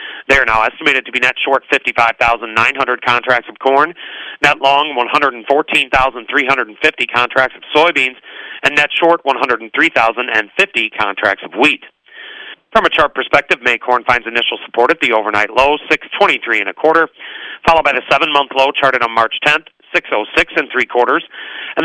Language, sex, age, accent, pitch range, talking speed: English, male, 40-59, American, 120-145 Hz, 155 wpm